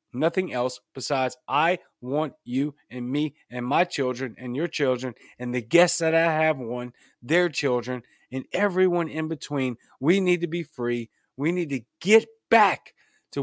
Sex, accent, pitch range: male, American, 130-180 Hz